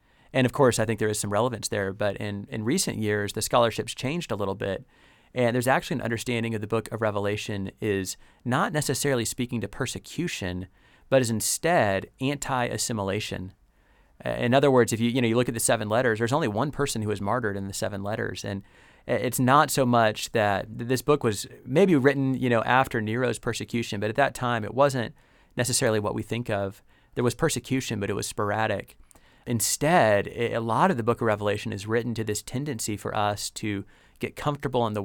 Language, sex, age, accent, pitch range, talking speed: English, male, 30-49, American, 105-125 Hz, 205 wpm